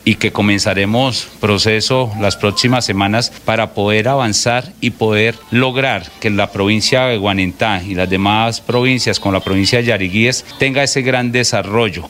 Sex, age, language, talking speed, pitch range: male, 40-59, Spanish, 155 wpm, 100-120 Hz